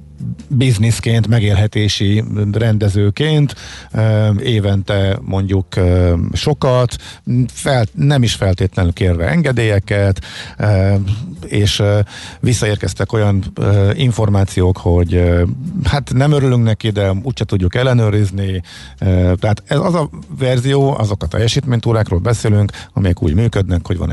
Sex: male